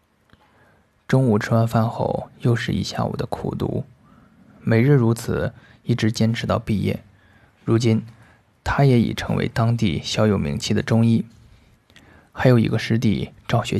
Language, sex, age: Chinese, male, 20-39